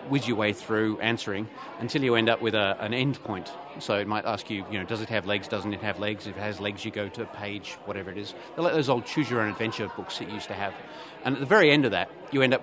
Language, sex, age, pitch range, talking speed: English, male, 30-49, 105-140 Hz, 295 wpm